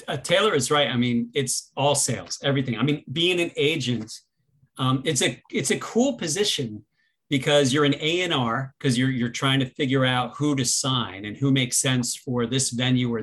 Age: 40-59